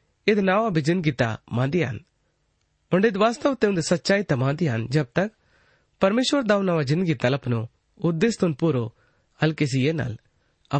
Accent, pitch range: native, 130-185 Hz